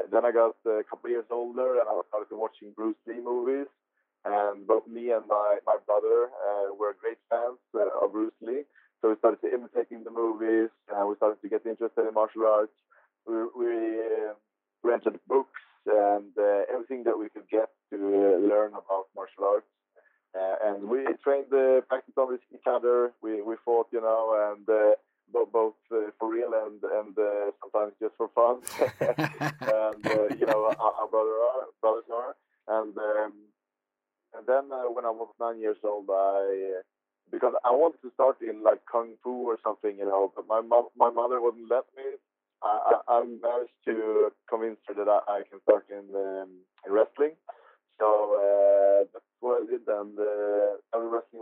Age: 20-39